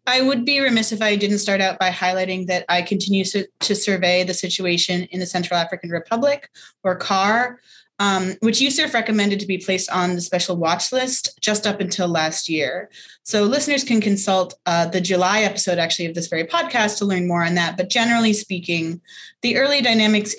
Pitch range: 175-210 Hz